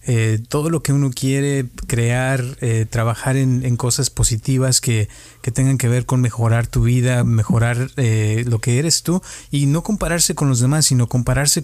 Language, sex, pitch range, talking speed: Spanish, male, 120-140 Hz, 185 wpm